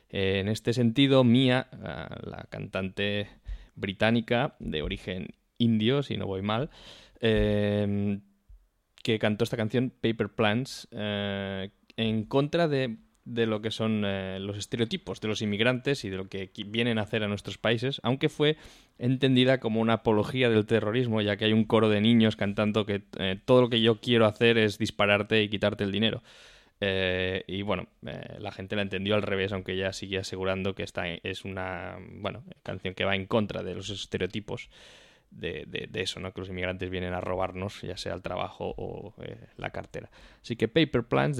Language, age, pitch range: Spanish, 20-39, 95-115 Hz